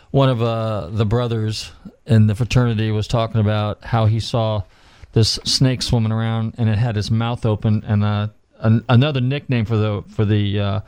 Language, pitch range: English, 105-130 Hz